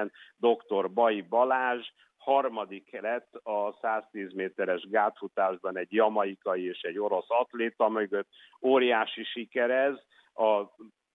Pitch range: 100-120 Hz